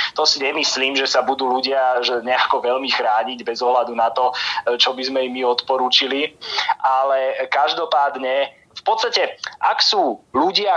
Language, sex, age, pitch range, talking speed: Slovak, male, 30-49, 125-150 Hz, 145 wpm